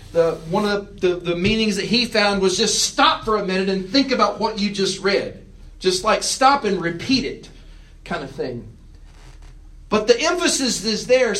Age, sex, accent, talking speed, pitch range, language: 40-59, male, American, 195 wpm, 175-235 Hz, English